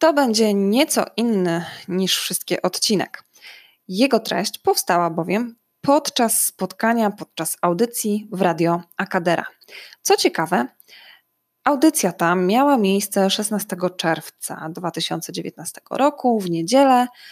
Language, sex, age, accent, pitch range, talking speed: Polish, female, 20-39, native, 175-230 Hz, 105 wpm